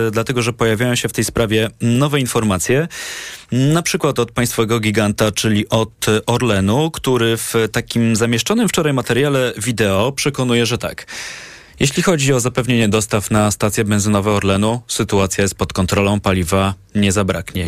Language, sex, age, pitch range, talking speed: Polish, male, 20-39, 100-125 Hz, 145 wpm